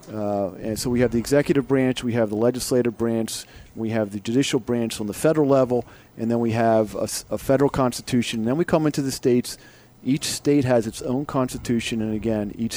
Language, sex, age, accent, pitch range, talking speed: English, male, 40-59, American, 105-125 Hz, 215 wpm